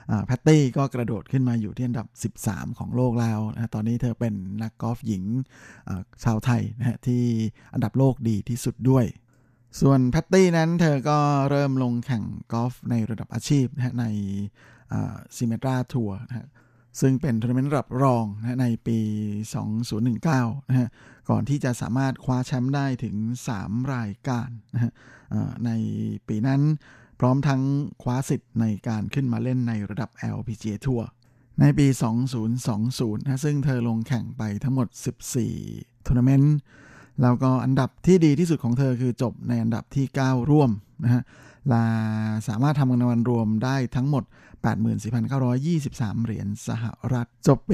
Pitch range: 115-130 Hz